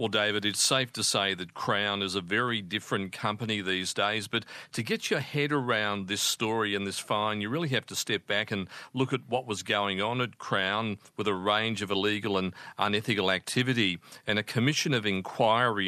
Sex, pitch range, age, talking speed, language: male, 100-120 Hz, 40-59, 205 wpm, English